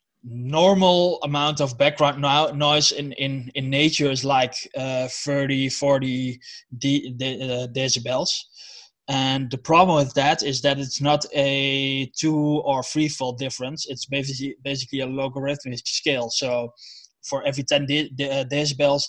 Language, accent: English, Dutch